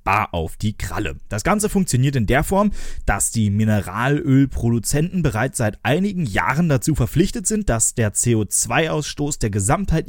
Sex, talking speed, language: male, 145 wpm, German